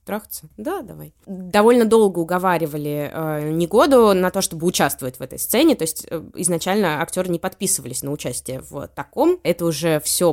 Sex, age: female, 20-39